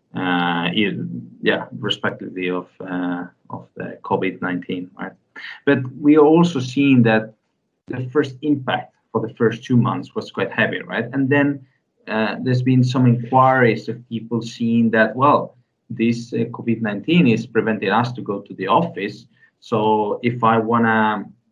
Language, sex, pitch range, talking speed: English, male, 105-125 Hz, 155 wpm